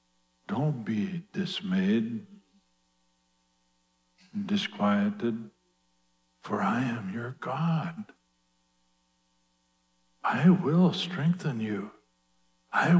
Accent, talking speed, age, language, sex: American, 65 wpm, 60-79, English, male